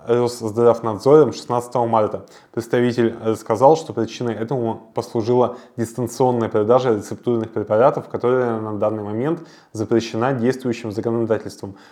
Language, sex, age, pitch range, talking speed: Russian, male, 20-39, 110-130 Hz, 100 wpm